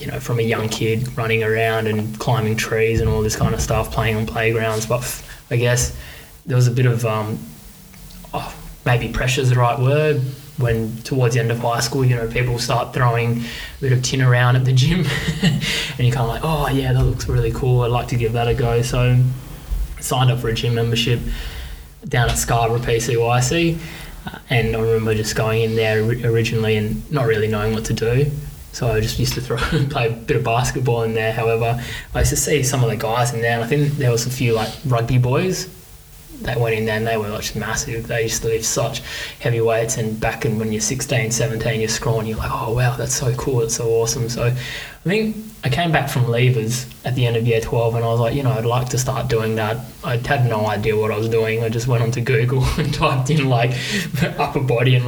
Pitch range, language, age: 115-130 Hz, English, 20-39